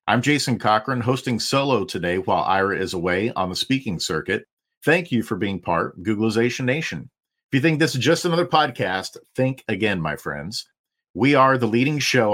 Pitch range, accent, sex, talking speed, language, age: 110-130 Hz, American, male, 190 wpm, English, 50-69